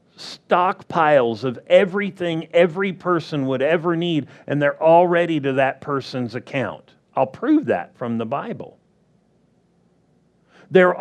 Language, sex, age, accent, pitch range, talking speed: English, male, 50-69, American, 140-180 Hz, 120 wpm